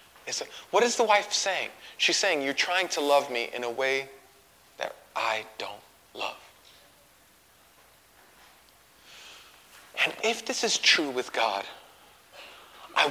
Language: English